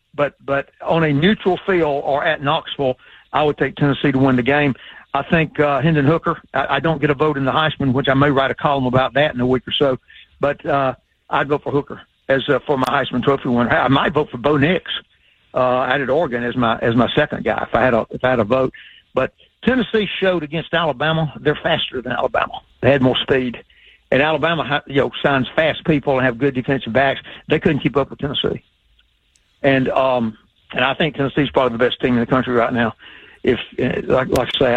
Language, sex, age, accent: English, male, 60-79, American